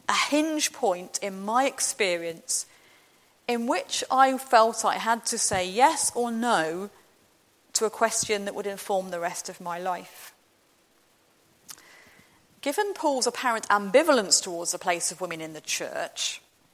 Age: 40-59